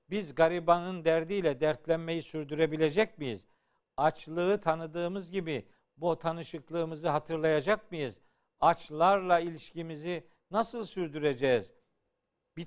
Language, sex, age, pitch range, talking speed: Turkish, male, 50-69, 160-195 Hz, 85 wpm